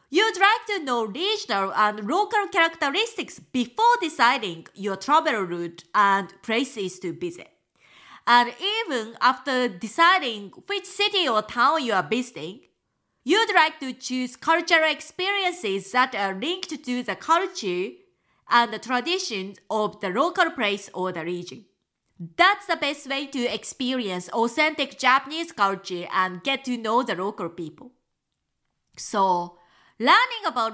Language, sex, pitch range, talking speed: English, female, 200-325 Hz, 135 wpm